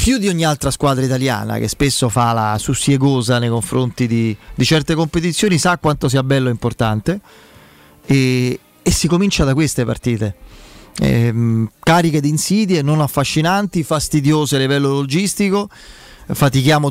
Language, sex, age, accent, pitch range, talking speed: Italian, male, 30-49, native, 125-145 Hz, 140 wpm